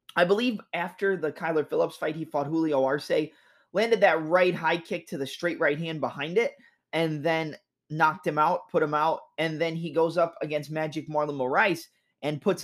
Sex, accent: male, American